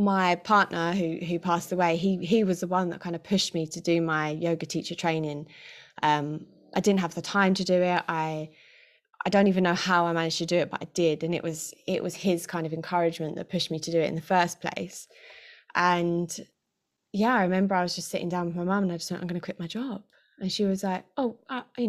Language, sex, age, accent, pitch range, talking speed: English, female, 20-39, British, 170-215 Hz, 255 wpm